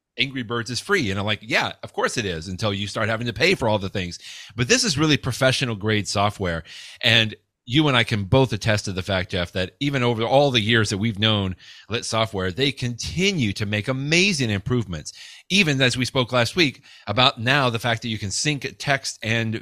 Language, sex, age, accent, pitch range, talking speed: English, male, 30-49, American, 100-135 Hz, 225 wpm